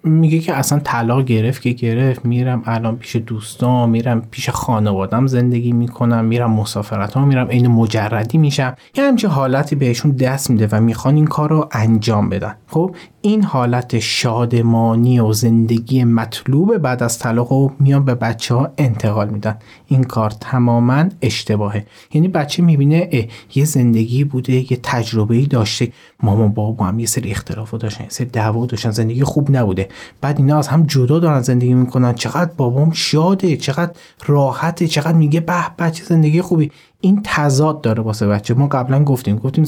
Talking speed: 160 wpm